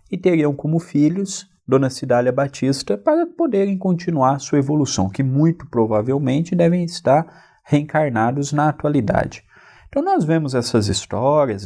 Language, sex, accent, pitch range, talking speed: Portuguese, male, Brazilian, 110-170 Hz, 130 wpm